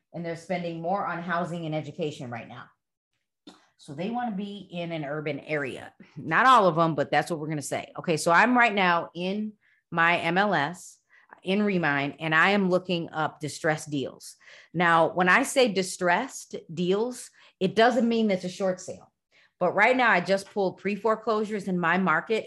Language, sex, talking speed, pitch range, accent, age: English, female, 185 wpm, 160-205 Hz, American, 30-49